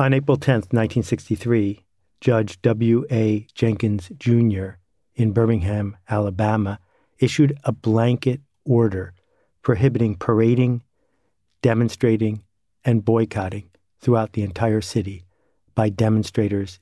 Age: 50-69